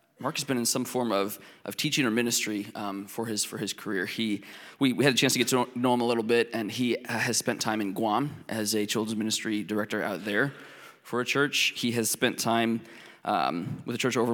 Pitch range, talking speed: 110-125 Hz, 245 wpm